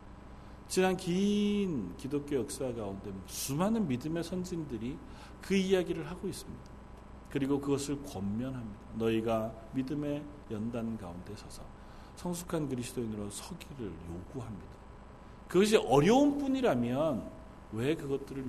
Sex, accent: male, native